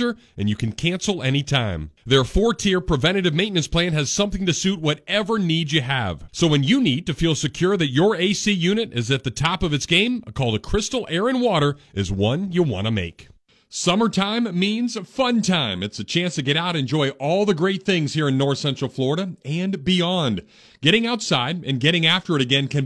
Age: 40-59